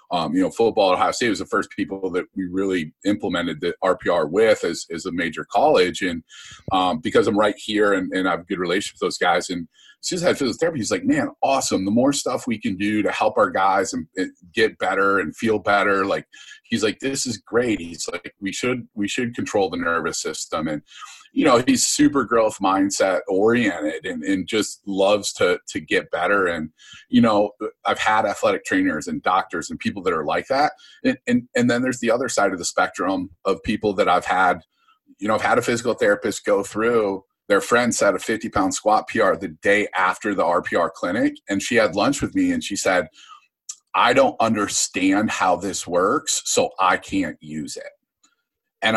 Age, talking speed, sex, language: 30-49, 210 wpm, male, English